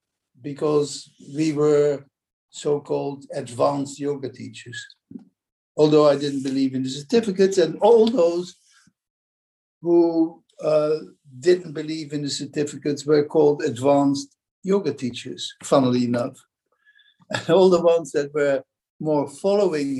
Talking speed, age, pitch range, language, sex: 115 wpm, 60-79, 135-180 Hz, English, male